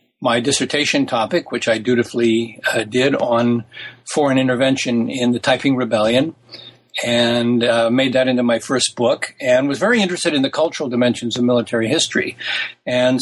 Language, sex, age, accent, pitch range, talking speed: English, male, 60-79, American, 125-150 Hz, 160 wpm